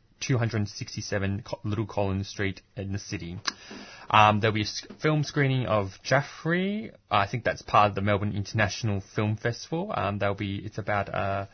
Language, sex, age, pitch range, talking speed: English, male, 20-39, 95-110 Hz, 165 wpm